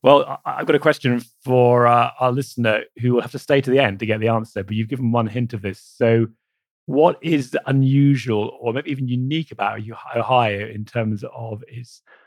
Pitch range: 105-125 Hz